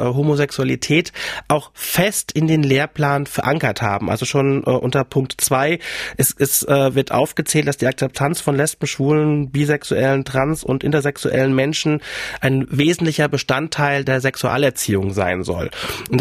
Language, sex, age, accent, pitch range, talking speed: German, male, 30-49, German, 130-150 Hz, 140 wpm